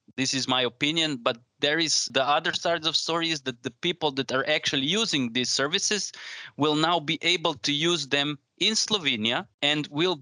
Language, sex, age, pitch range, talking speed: English, male, 20-39, 120-145 Hz, 195 wpm